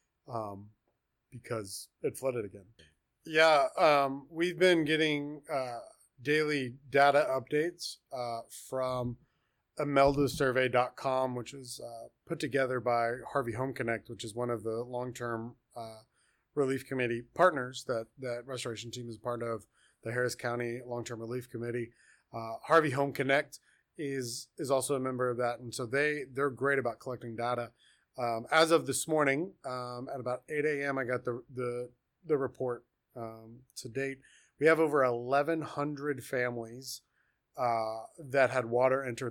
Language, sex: English, male